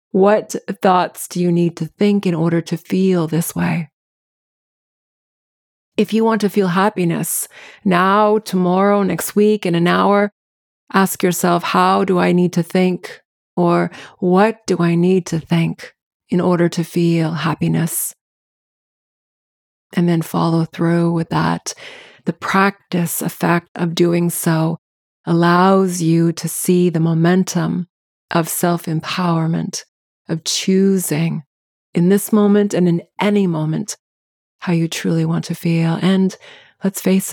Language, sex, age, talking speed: English, female, 30-49, 135 wpm